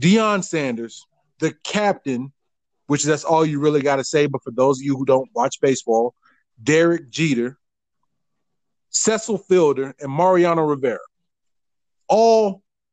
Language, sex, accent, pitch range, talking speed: English, male, American, 140-185 Hz, 135 wpm